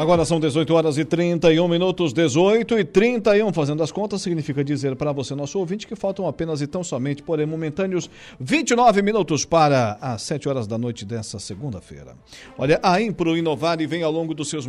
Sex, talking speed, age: male, 195 wpm, 50-69